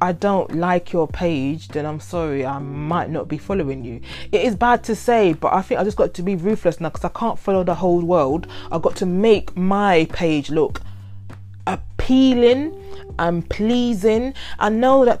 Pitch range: 155-220 Hz